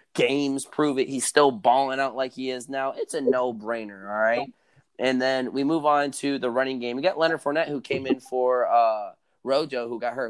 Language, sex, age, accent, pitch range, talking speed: English, male, 20-39, American, 110-140 Hz, 220 wpm